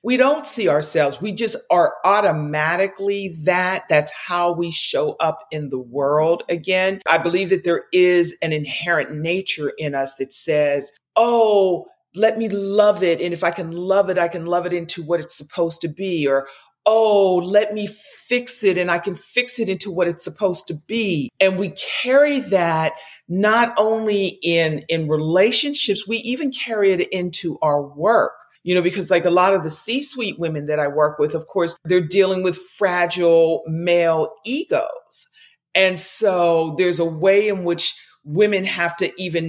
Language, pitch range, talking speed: English, 160-205 Hz, 180 wpm